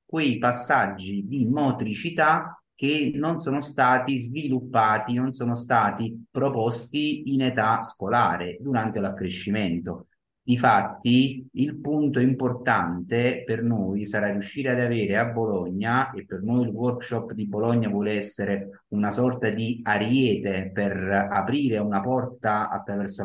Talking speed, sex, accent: 125 wpm, male, native